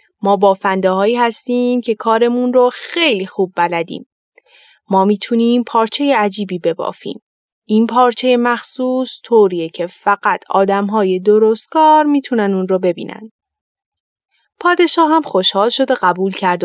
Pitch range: 190-275 Hz